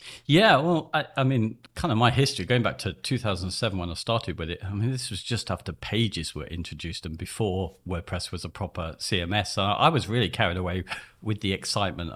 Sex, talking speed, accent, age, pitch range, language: male, 210 wpm, British, 50-69, 85-115 Hz, English